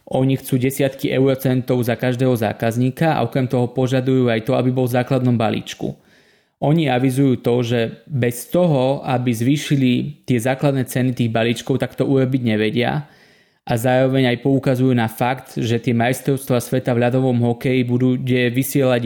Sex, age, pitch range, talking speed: male, 20-39, 120-135 Hz, 155 wpm